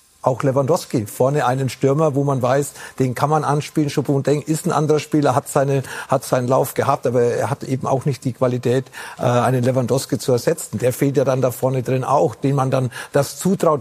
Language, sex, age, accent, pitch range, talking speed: German, male, 40-59, German, 130-155 Hz, 215 wpm